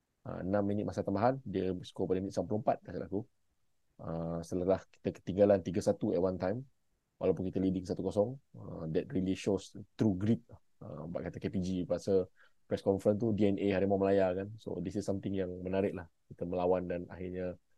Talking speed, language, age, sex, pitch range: 170 wpm, Malay, 20-39, male, 90-100 Hz